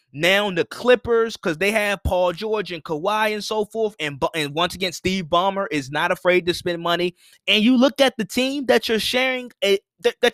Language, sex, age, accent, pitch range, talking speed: English, male, 20-39, American, 150-220 Hz, 215 wpm